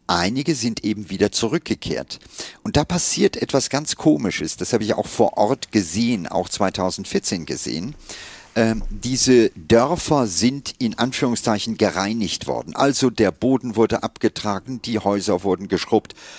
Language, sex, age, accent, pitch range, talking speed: German, male, 50-69, German, 95-125 Hz, 140 wpm